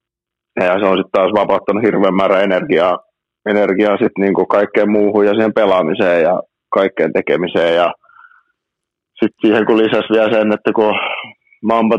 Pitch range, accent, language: 95-110 Hz, native, Finnish